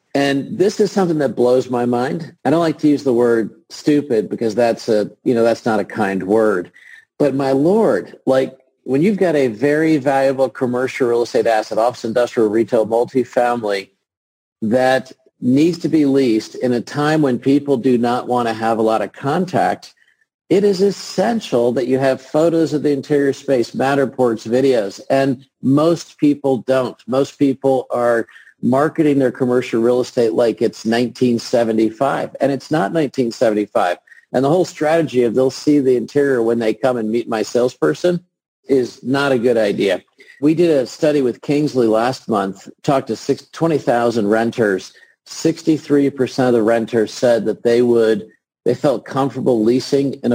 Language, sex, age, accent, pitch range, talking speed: English, male, 50-69, American, 115-145 Hz, 165 wpm